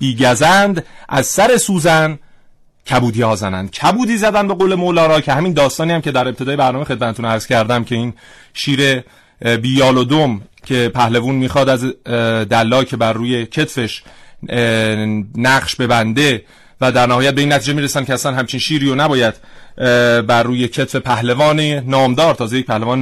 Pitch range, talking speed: 120-155 Hz, 150 wpm